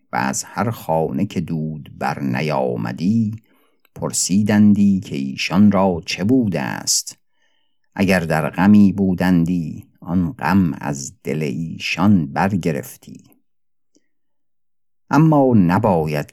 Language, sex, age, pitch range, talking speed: Persian, male, 50-69, 75-100 Hz, 95 wpm